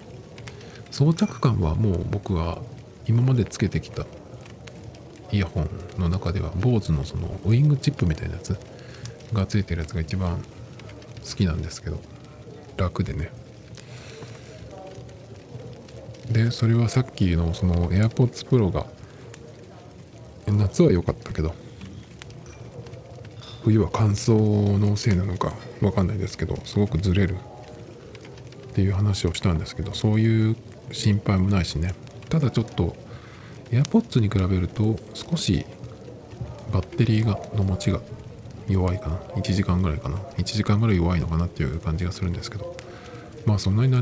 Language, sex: Japanese, male